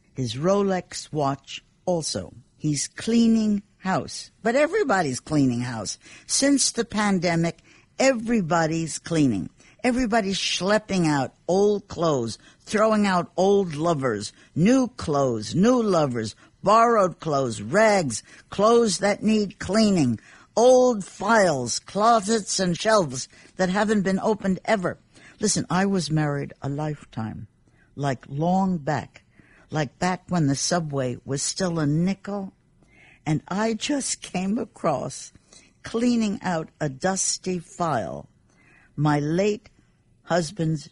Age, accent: 60-79, American